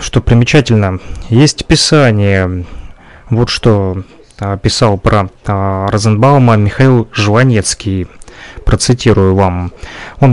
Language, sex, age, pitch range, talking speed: Russian, male, 30-49, 100-125 Hz, 80 wpm